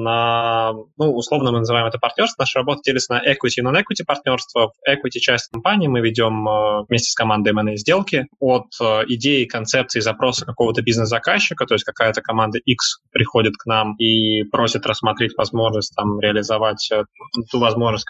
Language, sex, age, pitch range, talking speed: Russian, male, 20-39, 110-130 Hz, 160 wpm